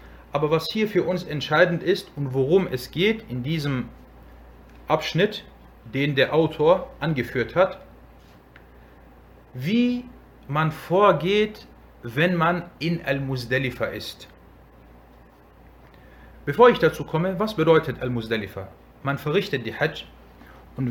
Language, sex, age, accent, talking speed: German, male, 40-59, German, 120 wpm